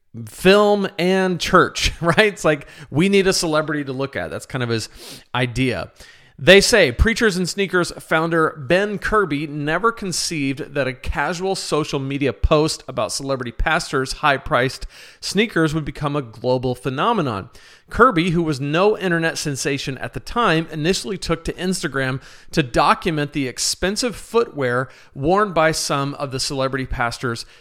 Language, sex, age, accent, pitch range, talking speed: English, male, 40-59, American, 135-180 Hz, 150 wpm